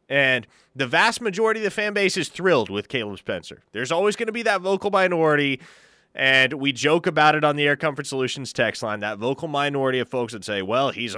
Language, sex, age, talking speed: English, male, 20-39, 225 wpm